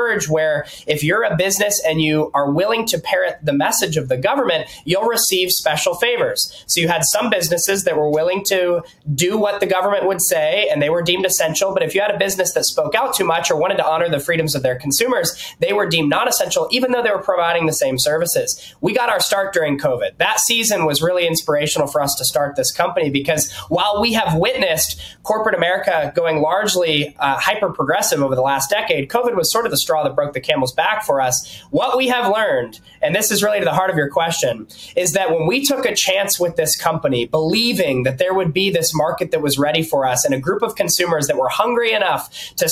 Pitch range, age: 155-210 Hz, 20-39